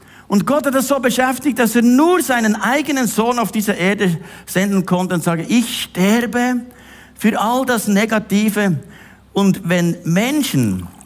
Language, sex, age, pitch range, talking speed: German, male, 50-69, 170-235 Hz, 150 wpm